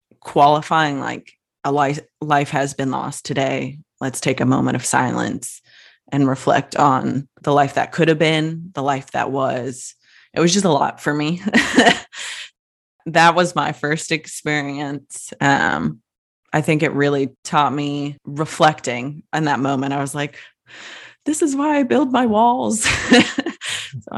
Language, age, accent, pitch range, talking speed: English, 20-39, American, 140-185 Hz, 155 wpm